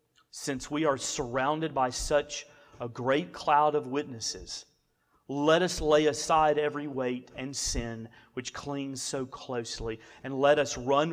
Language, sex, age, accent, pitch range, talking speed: English, male, 40-59, American, 125-155 Hz, 145 wpm